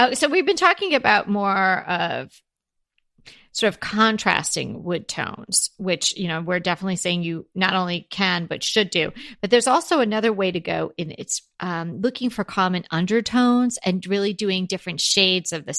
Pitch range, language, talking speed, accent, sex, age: 180-215 Hz, English, 175 wpm, American, female, 40-59